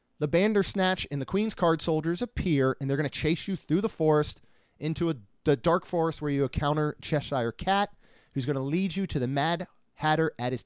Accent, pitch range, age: American, 135-170 Hz, 30-49